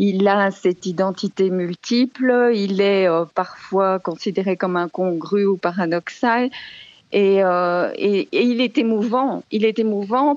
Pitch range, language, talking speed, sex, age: 175-225 Hz, French, 140 wpm, female, 40-59